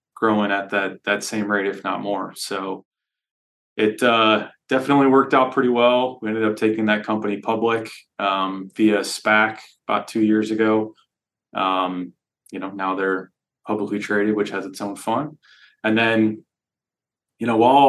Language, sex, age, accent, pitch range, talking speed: English, male, 20-39, American, 105-120 Hz, 160 wpm